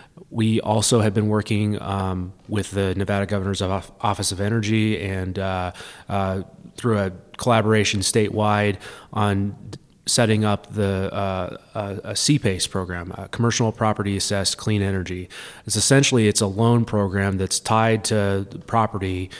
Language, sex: English, male